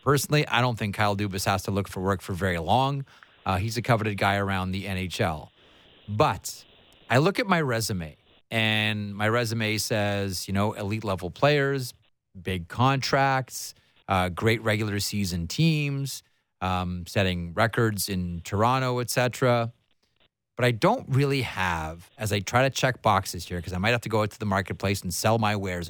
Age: 30-49